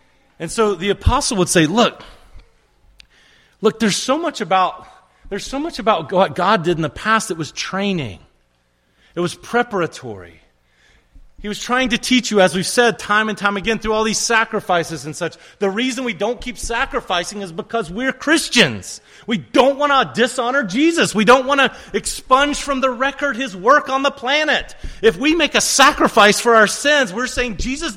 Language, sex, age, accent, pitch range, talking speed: English, male, 30-49, American, 180-250 Hz, 185 wpm